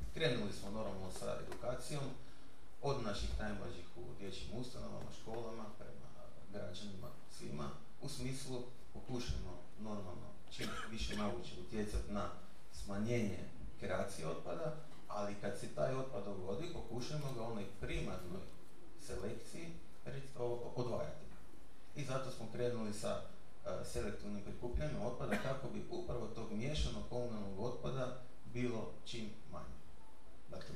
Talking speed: 115 wpm